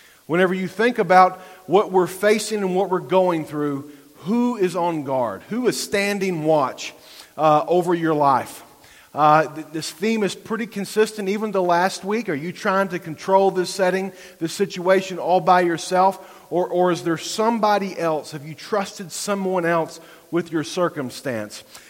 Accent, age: American, 40-59